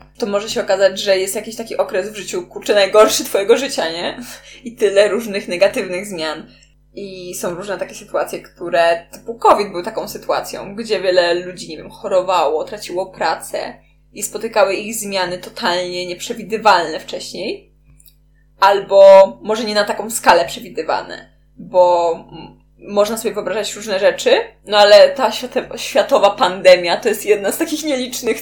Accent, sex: native, female